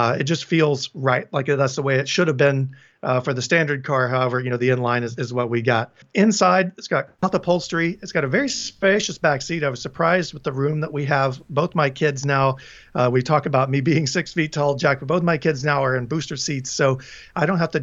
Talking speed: 255 wpm